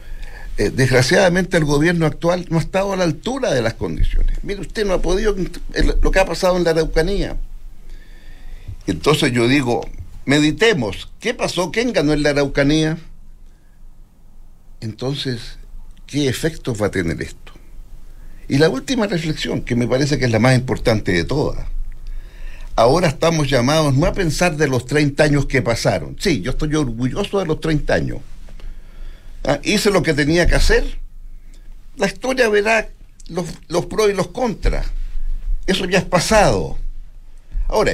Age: 60-79